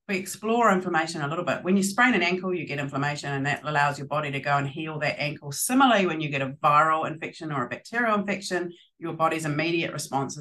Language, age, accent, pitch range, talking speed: English, 40-59, Australian, 140-180 Hz, 230 wpm